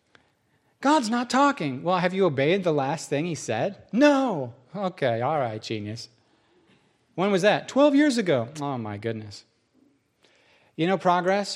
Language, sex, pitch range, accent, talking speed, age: English, male, 140-215 Hz, American, 150 wpm, 30-49